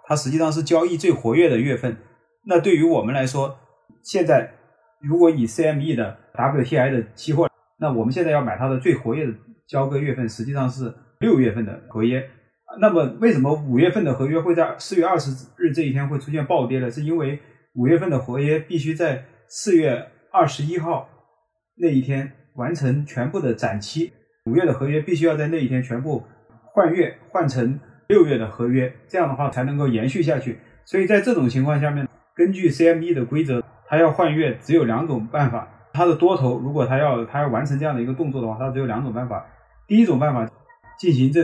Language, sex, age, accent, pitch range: Chinese, male, 20-39, native, 120-160 Hz